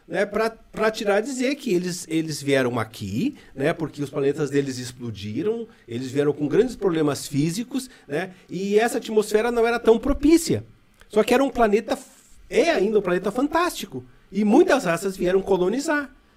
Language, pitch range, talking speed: Portuguese, 155-230 Hz, 160 wpm